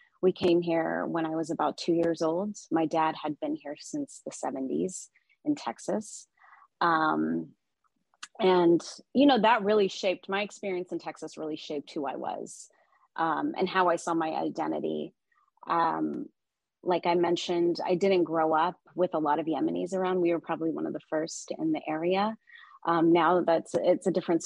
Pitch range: 165-195 Hz